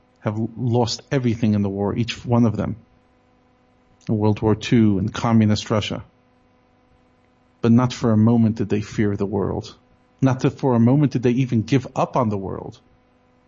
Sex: male